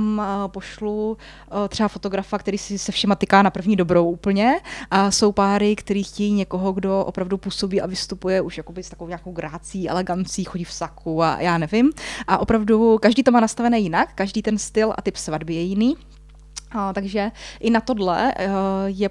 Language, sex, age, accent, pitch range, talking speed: Czech, female, 20-39, native, 195-220 Hz, 180 wpm